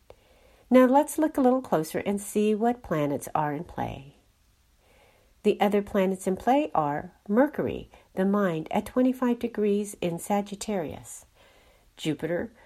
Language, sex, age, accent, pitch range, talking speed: English, female, 50-69, American, 165-235 Hz, 135 wpm